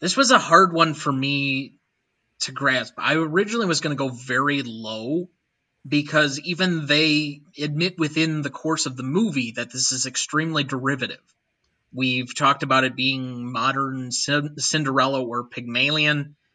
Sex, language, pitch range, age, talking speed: male, English, 130-155 Hz, 30-49, 150 wpm